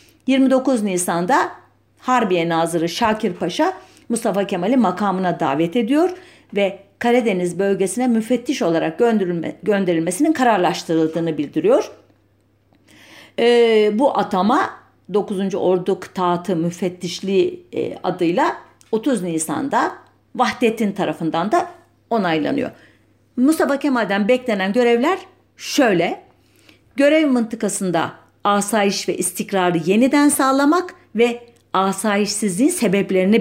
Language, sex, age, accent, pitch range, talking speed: German, female, 50-69, Turkish, 180-255 Hz, 85 wpm